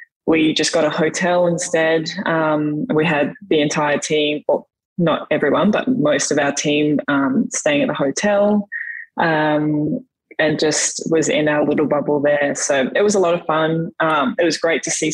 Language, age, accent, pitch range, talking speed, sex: English, 20-39, Australian, 150-175 Hz, 180 wpm, female